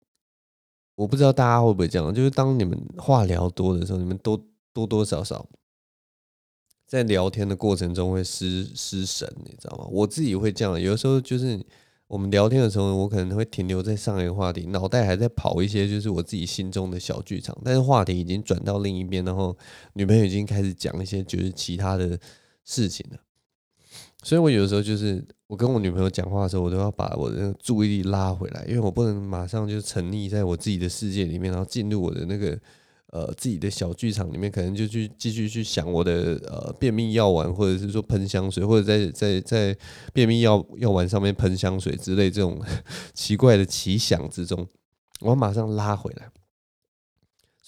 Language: Chinese